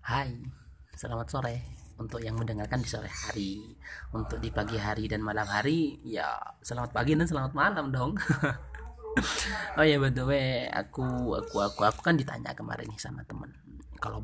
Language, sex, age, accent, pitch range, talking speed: Indonesian, male, 30-49, native, 110-140 Hz, 155 wpm